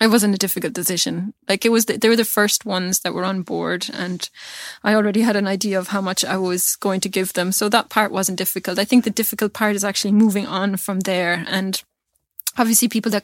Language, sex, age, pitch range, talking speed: Danish, female, 20-39, 190-210 Hz, 240 wpm